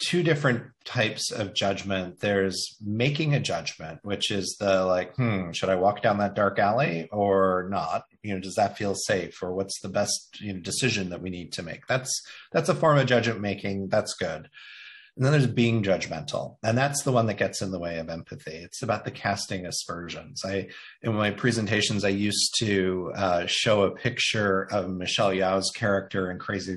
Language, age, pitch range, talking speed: English, 30-49, 95-115 Hz, 195 wpm